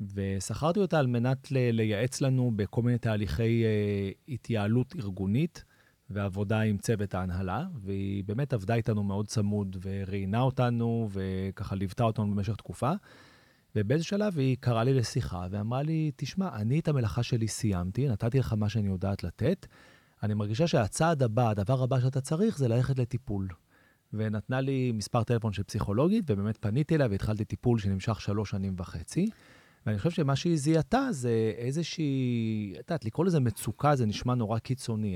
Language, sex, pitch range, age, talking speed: Hebrew, male, 105-130 Hz, 30-49, 145 wpm